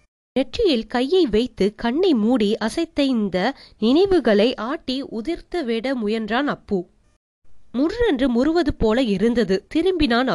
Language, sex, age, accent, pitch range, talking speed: Tamil, female, 20-39, native, 225-310 Hz, 85 wpm